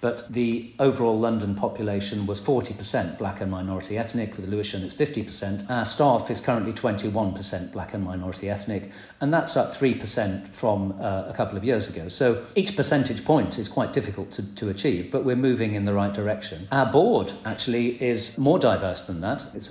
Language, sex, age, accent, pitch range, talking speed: English, male, 40-59, British, 100-130 Hz, 190 wpm